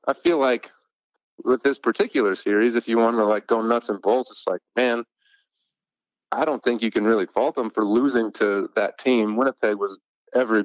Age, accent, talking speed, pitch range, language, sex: 30-49, American, 195 wpm, 105-120 Hz, English, male